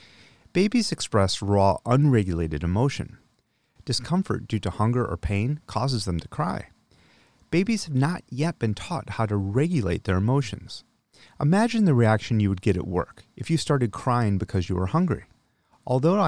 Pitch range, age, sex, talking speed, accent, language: 100-140 Hz, 30-49, male, 160 wpm, American, English